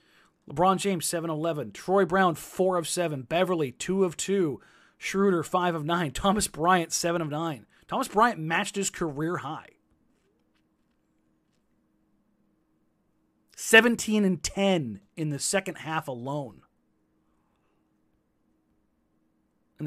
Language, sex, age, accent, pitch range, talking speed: English, male, 30-49, American, 145-185 Hz, 95 wpm